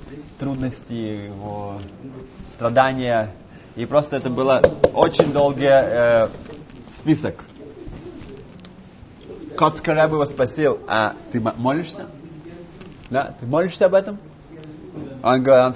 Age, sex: 20-39, male